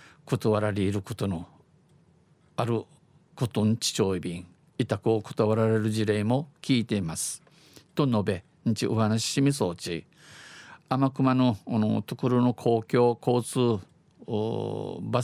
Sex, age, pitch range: male, 50-69, 105-130 Hz